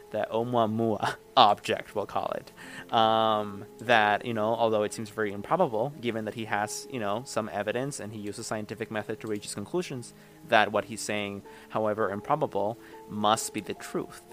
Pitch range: 105-120 Hz